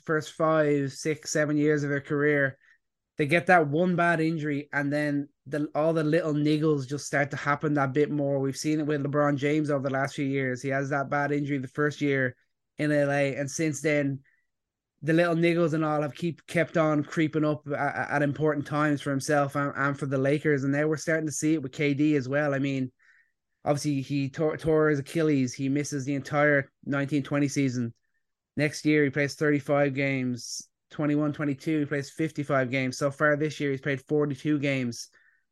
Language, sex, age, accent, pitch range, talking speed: English, male, 20-39, Irish, 140-160 Hz, 200 wpm